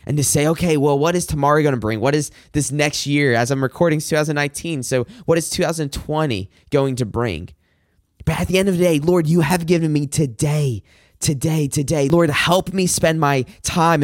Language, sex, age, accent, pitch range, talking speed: English, male, 20-39, American, 130-170 Hz, 205 wpm